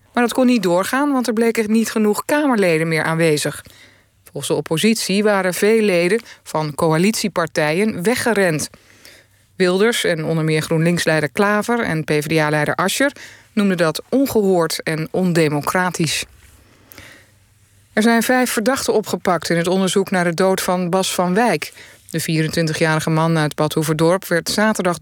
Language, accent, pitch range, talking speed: Dutch, Dutch, 155-220 Hz, 140 wpm